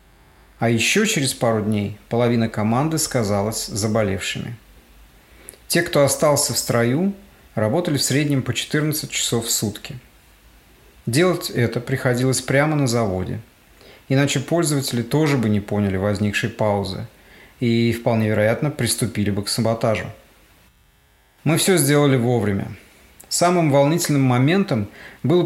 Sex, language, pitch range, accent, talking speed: male, Russian, 110-140 Hz, native, 120 wpm